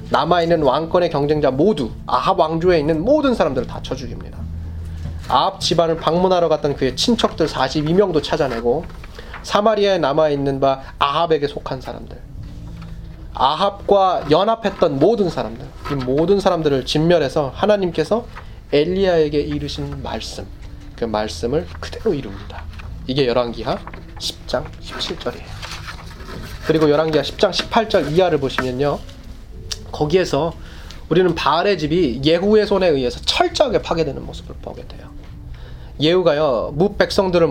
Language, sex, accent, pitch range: Korean, male, native, 120-185 Hz